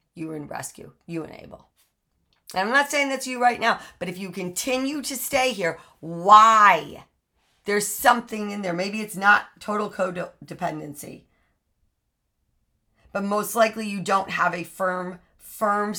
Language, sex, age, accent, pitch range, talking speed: English, female, 40-59, American, 155-190 Hz, 155 wpm